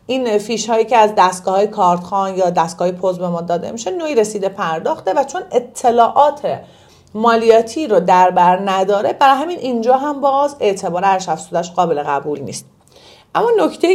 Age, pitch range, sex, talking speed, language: 40-59, 195-255 Hz, female, 145 wpm, Persian